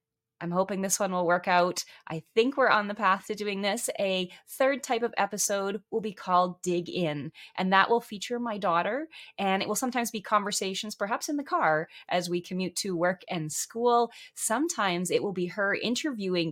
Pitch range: 165-215 Hz